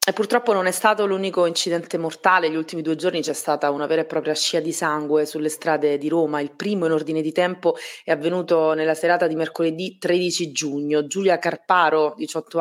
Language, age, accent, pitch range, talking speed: Italian, 30-49, native, 150-170 Hz, 200 wpm